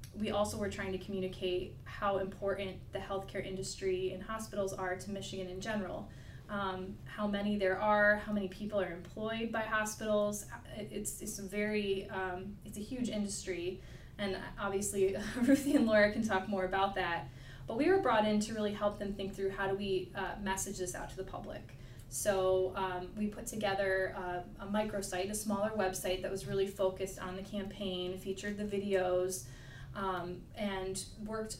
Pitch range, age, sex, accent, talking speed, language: 185-210 Hz, 20-39, female, American, 180 wpm, English